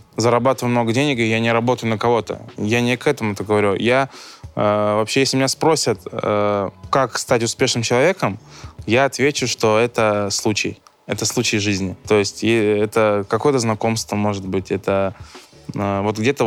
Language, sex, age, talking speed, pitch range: Russian, male, 20-39, 170 wpm, 105-130 Hz